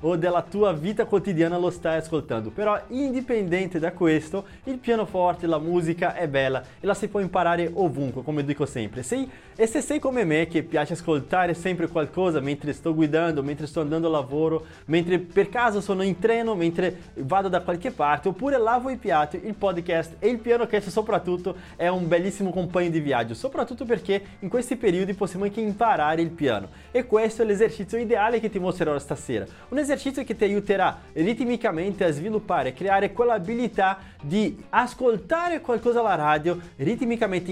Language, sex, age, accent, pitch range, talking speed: Italian, male, 20-39, Brazilian, 165-230 Hz, 175 wpm